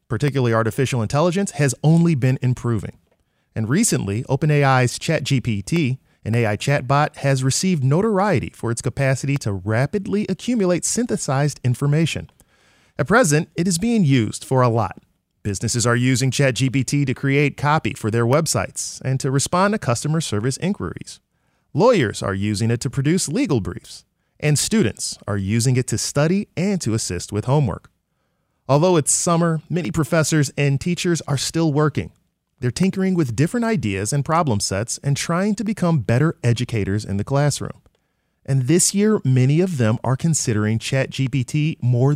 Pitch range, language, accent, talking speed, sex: 120-165 Hz, English, American, 155 wpm, male